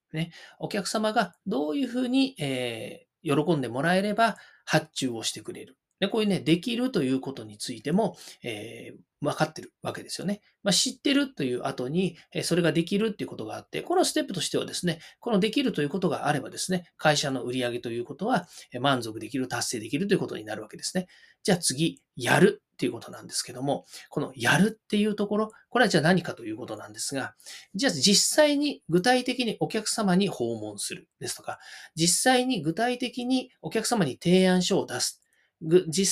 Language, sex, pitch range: Japanese, male, 155-250 Hz